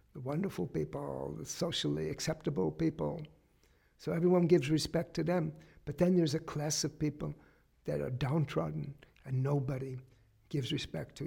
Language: English